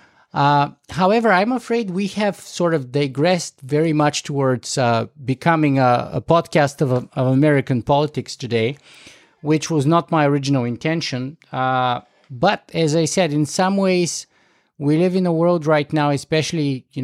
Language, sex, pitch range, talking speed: English, male, 130-160 Hz, 160 wpm